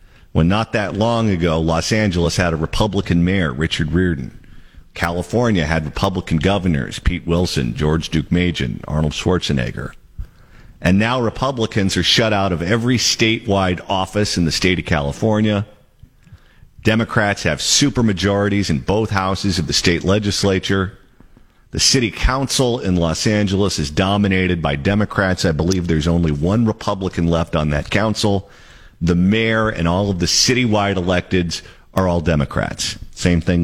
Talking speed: 150 wpm